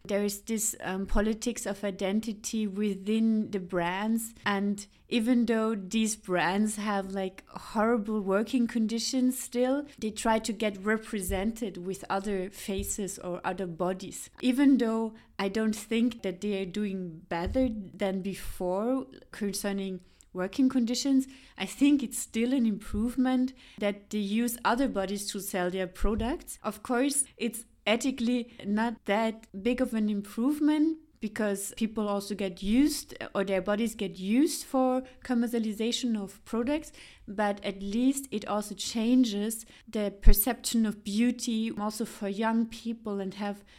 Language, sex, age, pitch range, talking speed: German, female, 30-49, 200-240 Hz, 140 wpm